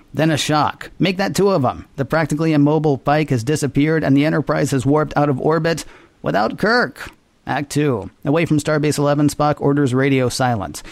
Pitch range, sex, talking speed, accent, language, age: 125-145 Hz, male, 185 wpm, American, English, 50-69